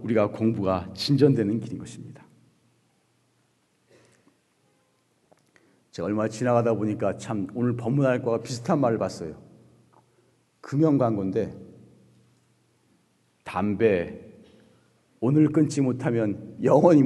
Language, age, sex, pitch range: Korean, 40-59, male, 110-160 Hz